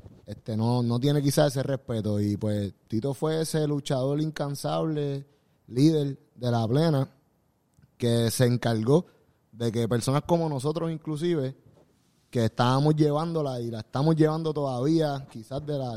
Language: Spanish